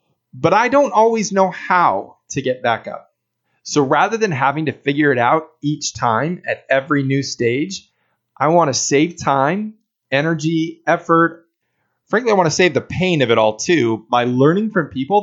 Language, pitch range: English, 125-175 Hz